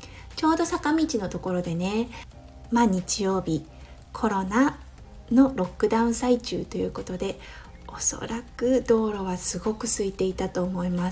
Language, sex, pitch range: Japanese, female, 175-240 Hz